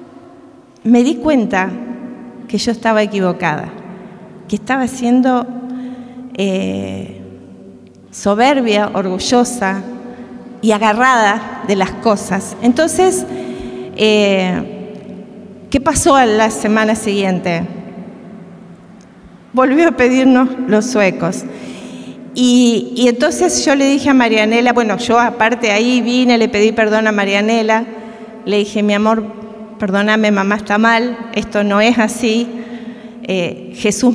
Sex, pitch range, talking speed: female, 210-250 Hz, 110 wpm